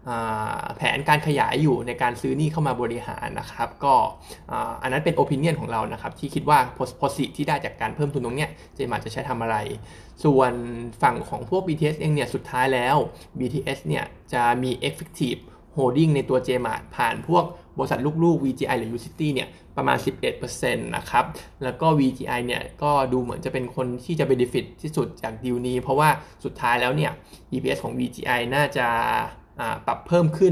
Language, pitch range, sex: Thai, 125-155 Hz, male